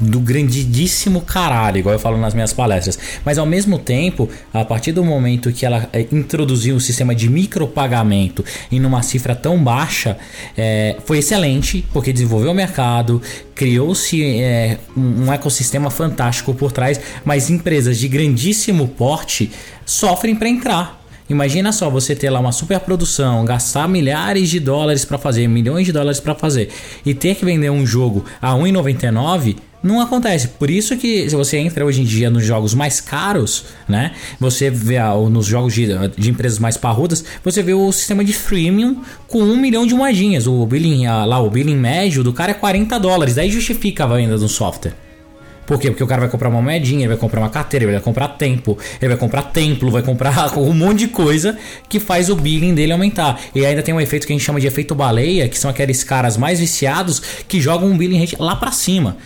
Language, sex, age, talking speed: Portuguese, male, 20-39, 190 wpm